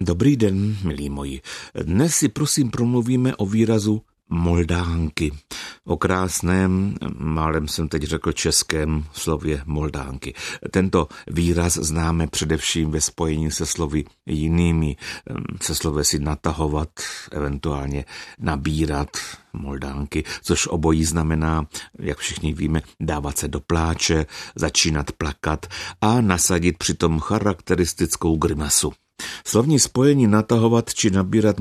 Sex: male